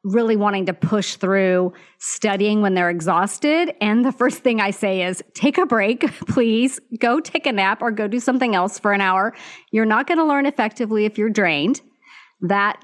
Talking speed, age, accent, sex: 195 wpm, 40-59, American, female